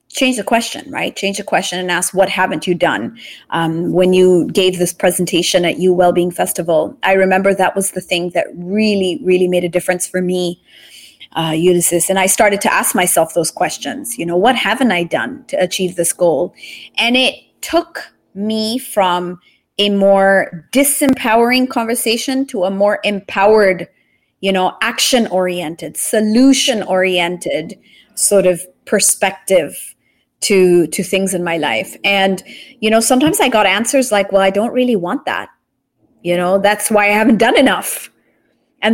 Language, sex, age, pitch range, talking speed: English, female, 30-49, 180-230 Hz, 165 wpm